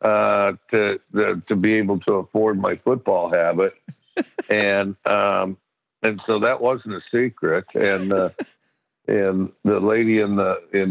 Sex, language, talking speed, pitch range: male, English, 145 wpm, 95-110 Hz